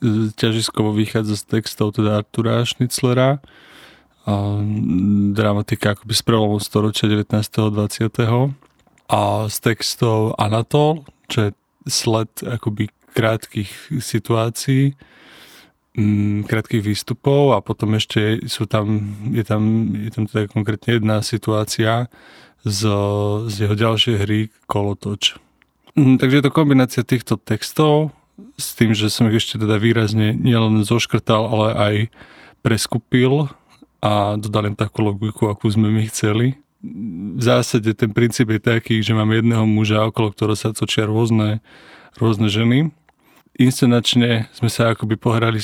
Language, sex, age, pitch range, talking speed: Slovak, male, 20-39, 105-120 Hz, 120 wpm